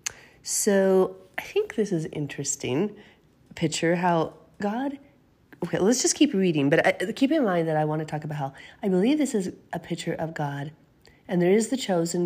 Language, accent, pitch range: English, American, 150-190 Hz